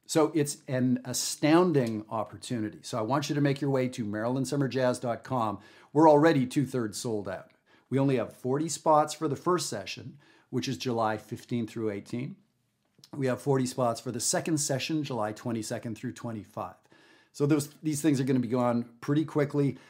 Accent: American